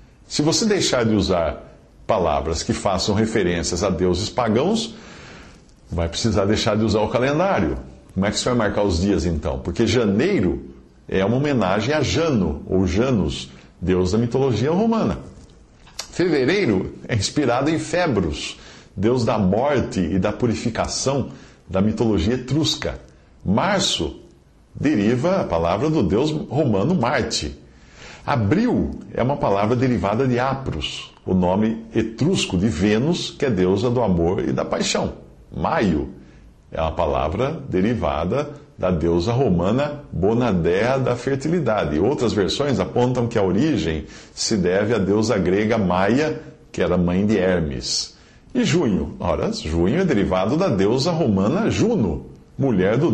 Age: 50-69